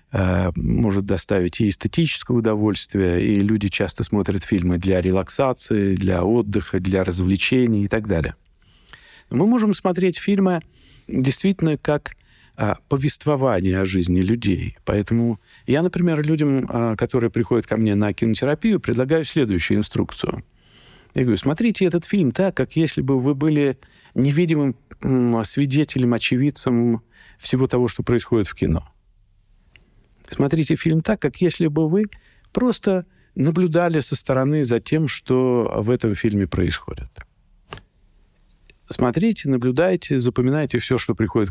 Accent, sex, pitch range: native, male, 100-150 Hz